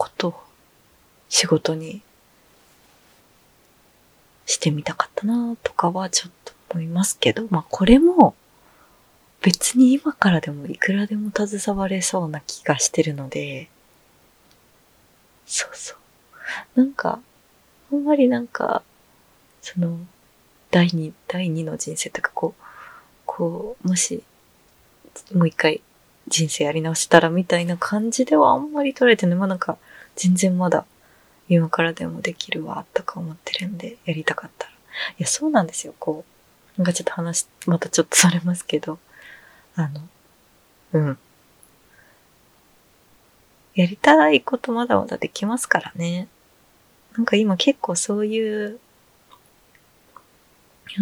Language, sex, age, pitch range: Japanese, female, 20-39, 170-230 Hz